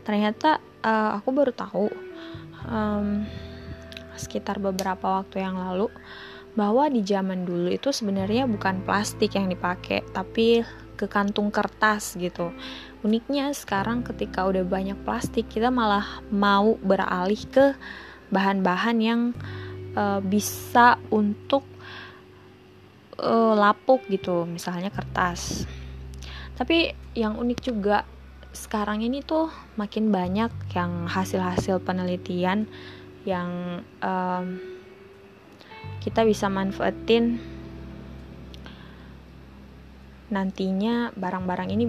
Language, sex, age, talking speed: Indonesian, female, 20-39, 95 wpm